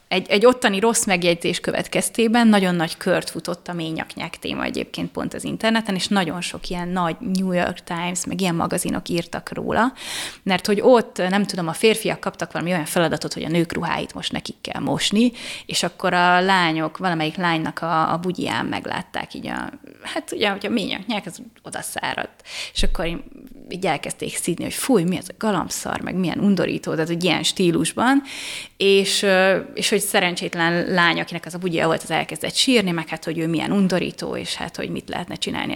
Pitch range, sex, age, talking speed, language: 175-225 Hz, female, 30-49, 185 wpm, Hungarian